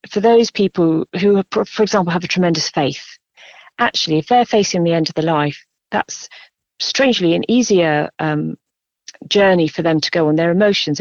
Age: 40-59